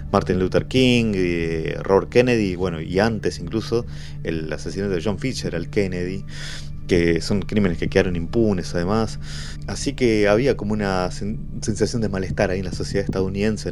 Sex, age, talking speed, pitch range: male, 20-39, 170 wpm, 80-105 Hz